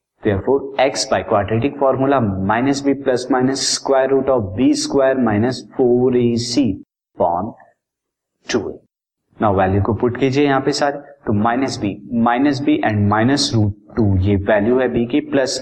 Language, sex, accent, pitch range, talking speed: Hindi, male, native, 120-150 Hz, 125 wpm